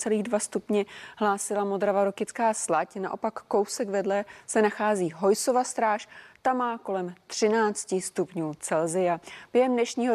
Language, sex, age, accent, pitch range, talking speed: Czech, female, 30-49, native, 180-220 Hz, 130 wpm